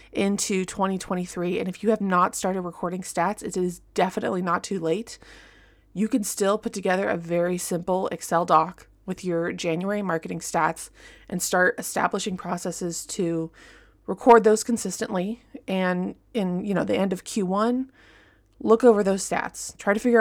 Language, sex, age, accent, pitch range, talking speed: English, female, 20-39, American, 175-210 Hz, 160 wpm